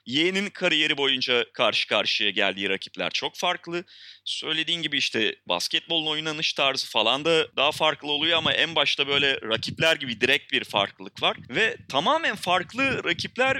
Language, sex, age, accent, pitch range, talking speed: Turkish, male, 30-49, native, 135-180 Hz, 150 wpm